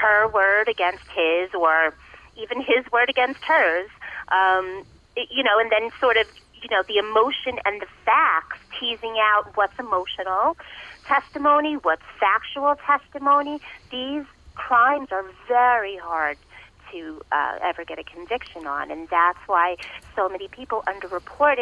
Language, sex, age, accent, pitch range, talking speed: English, female, 30-49, American, 185-255 Hz, 140 wpm